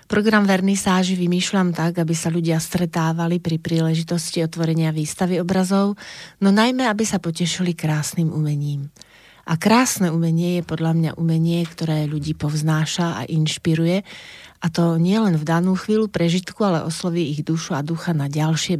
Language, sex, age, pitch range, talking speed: Slovak, female, 30-49, 155-185 Hz, 155 wpm